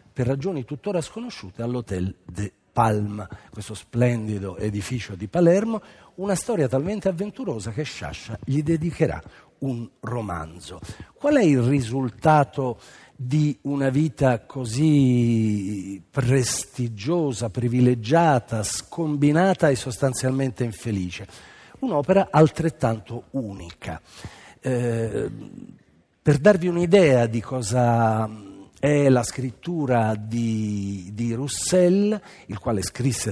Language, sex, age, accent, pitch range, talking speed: Italian, male, 50-69, native, 110-150 Hz, 95 wpm